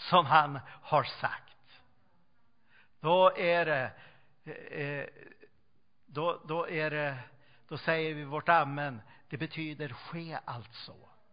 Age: 60-79